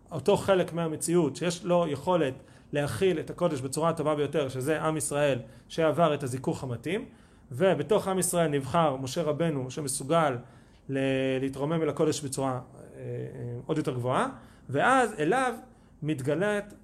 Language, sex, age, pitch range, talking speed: Hebrew, male, 30-49, 140-185 Hz, 155 wpm